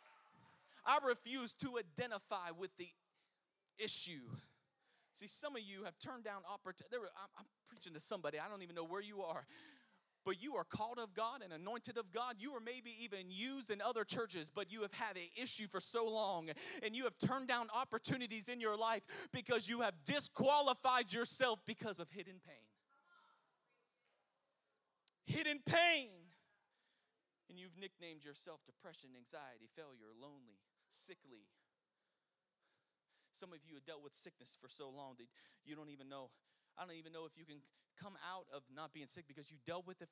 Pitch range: 150-230 Hz